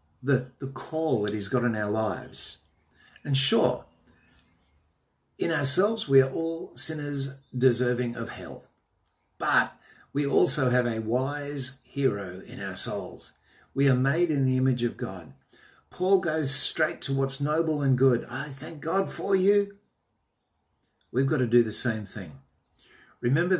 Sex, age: male, 50-69